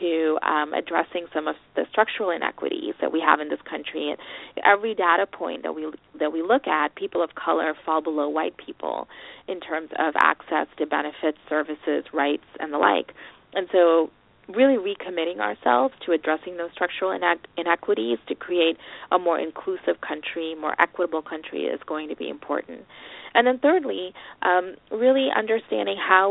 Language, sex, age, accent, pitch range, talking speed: English, female, 20-39, American, 155-185 Hz, 160 wpm